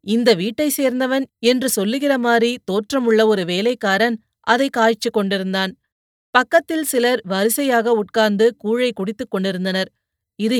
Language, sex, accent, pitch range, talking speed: Tamil, female, native, 205-245 Hz, 115 wpm